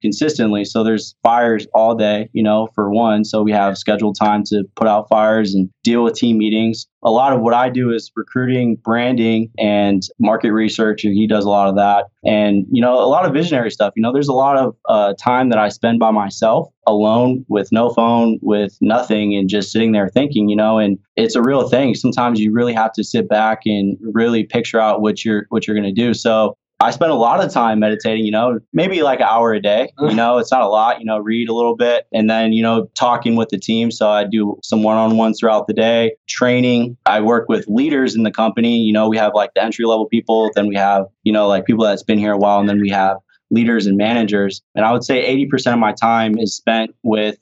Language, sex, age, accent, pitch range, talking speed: English, male, 20-39, American, 105-115 Hz, 240 wpm